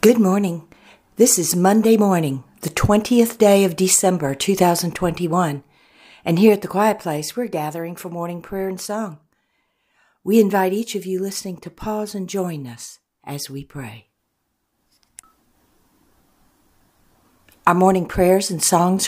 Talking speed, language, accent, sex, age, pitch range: 140 wpm, English, American, female, 60-79, 140-185 Hz